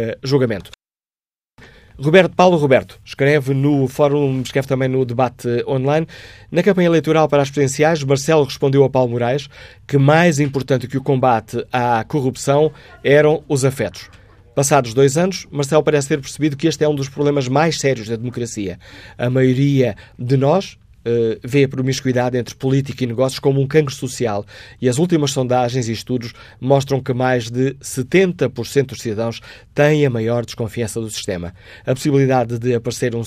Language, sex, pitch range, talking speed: Portuguese, male, 115-145 Hz, 160 wpm